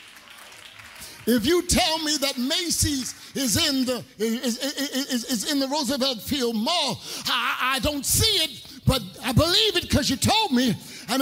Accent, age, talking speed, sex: American, 50-69, 170 wpm, male